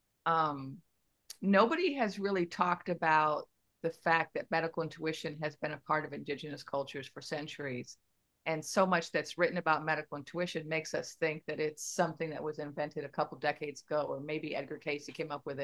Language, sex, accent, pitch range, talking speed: English, female, American, 155-195 Hz, 185 wpm